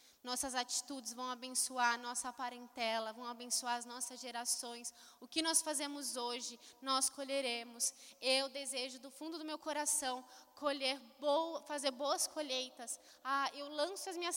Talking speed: 150 wpm